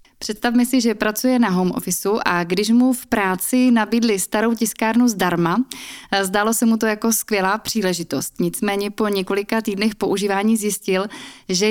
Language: Czech